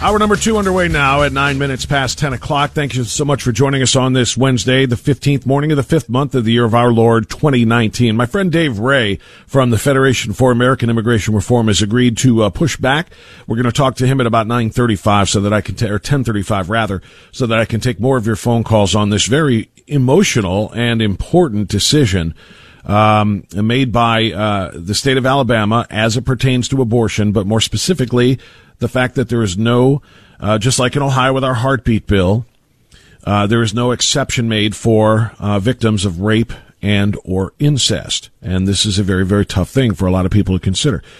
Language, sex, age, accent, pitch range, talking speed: English, male, 50-69, American, 105-130 Hz, 215 wpm